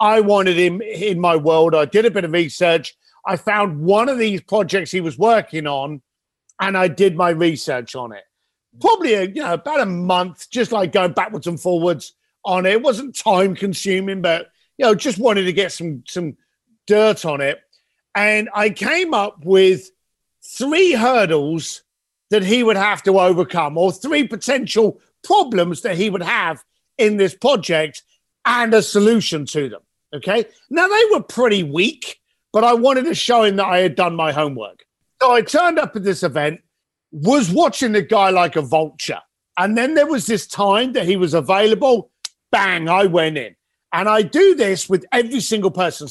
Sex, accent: male, British